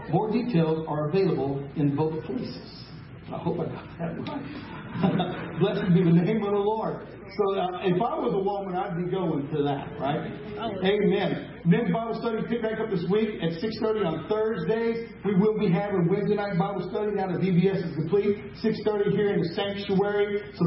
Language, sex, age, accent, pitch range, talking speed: English, male, 40-59, American, 160-200 Hz, 190 wpm